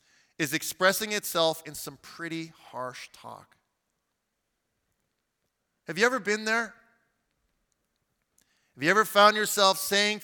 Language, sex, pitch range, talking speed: English, male, 155-195 Hz, 110 wpm